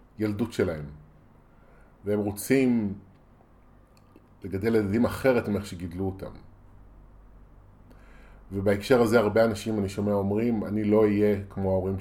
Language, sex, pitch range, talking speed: Hebrew, male, 95-110 Hz, 110 wpm